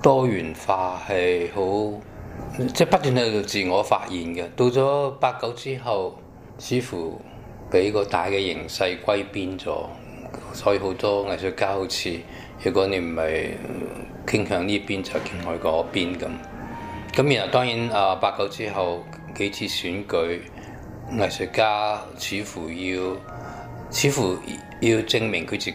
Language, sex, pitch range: Chinese, male, 95-115 Hz